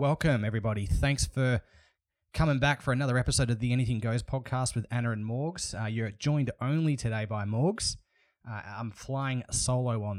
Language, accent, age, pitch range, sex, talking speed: English, Australian, 20-39, 100-130 Hz, male, 175 wpm